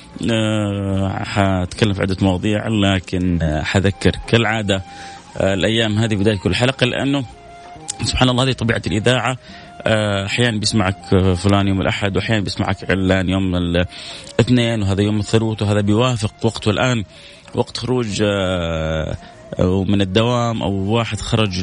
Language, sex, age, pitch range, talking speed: Arabic, male, 30-49, 100-125 Hz, 135 wpm